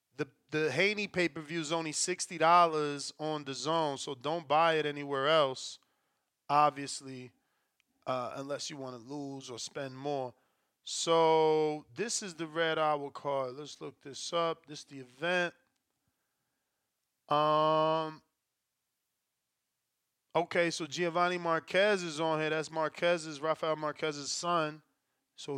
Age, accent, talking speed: 20-39, American, 125 wpm